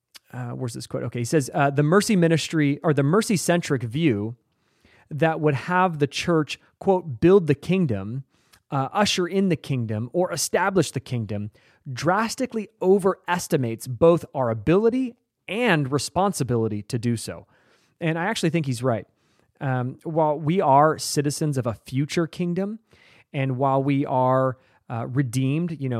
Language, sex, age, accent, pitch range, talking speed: English, male, 30-49, American, 120-160 Hz, 150 wpm